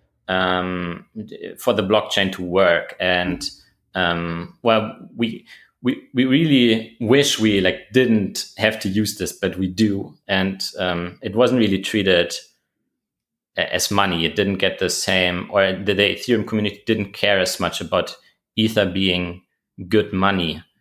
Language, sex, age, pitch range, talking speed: English, male, 30-49, 90-100 Hz, 145 wpm